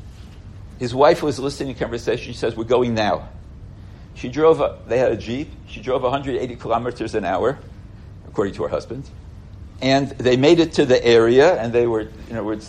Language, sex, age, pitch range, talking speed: English, male, 60-79, 100-125 Hz, 195 wpm